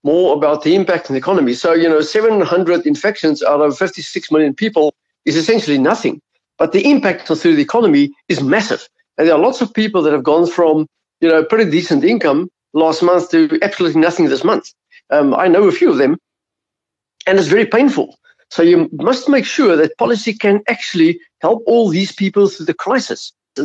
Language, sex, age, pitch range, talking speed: English, male, 50-69, 160-220 Hz, 200 wpm